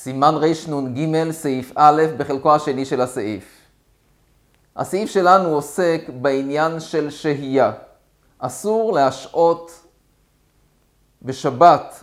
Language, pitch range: Hebrew, 135-170 Hz